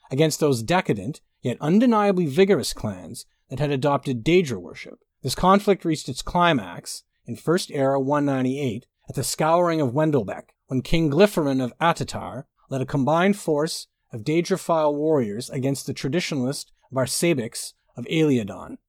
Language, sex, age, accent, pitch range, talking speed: English, male, 40-59, American, 135-175 Hz, 140 wpm